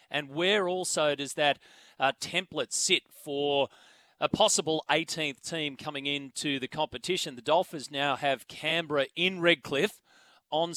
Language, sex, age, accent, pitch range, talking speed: English, male, 40-59, Australian, 140-170 Hz, 140 wpm